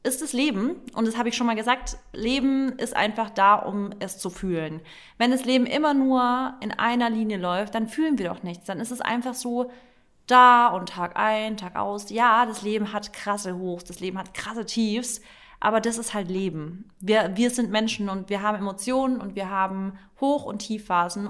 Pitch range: 195-235 Hz